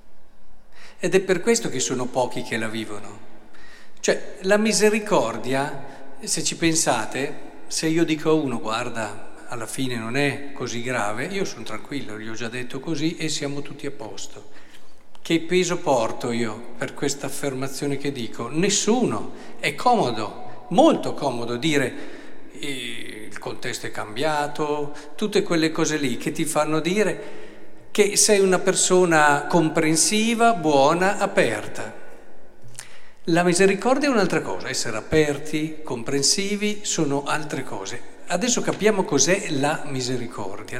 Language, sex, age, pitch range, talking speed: Italian, male, 50-69, 135-195 Hz, 135 wpm